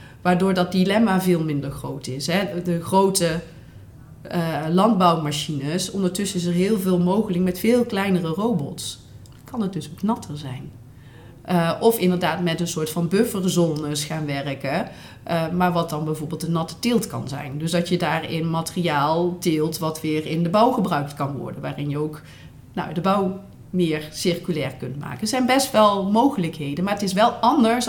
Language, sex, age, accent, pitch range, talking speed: Dutch, female, 40-59, Dutch, 155-195 Hz, 175 wpm